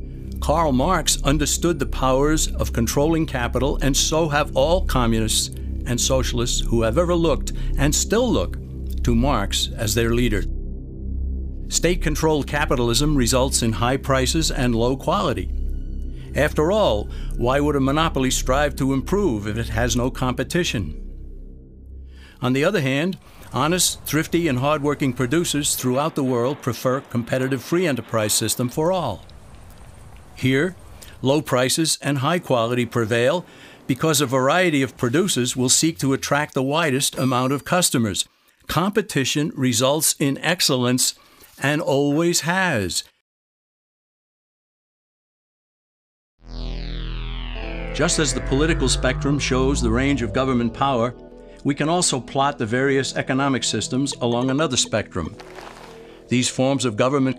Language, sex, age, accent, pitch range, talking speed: English, male, 60-79, American, 115-145 Hz, 130 wpm